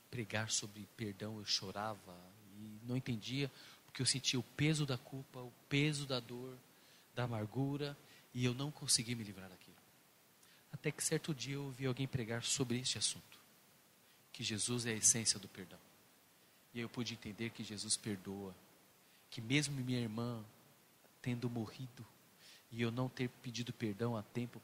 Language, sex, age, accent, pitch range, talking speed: Portuguese, male, 40-59, Brazilian, 110-135 Hz, 165 wpm